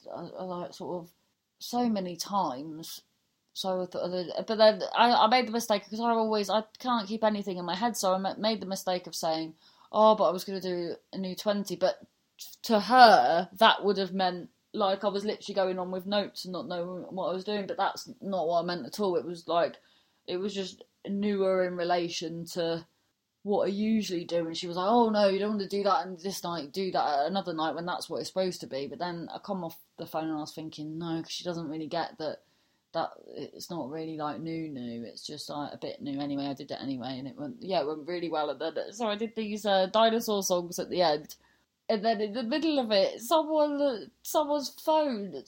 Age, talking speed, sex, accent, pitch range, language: 20-39, 235 wpm, female, British, 170-220 Hz, English